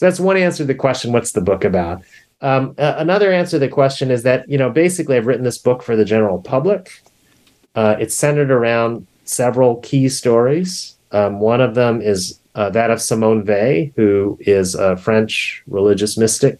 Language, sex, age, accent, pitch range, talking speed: English, male, 30-49, American, 95-120 Hz, 190 wpm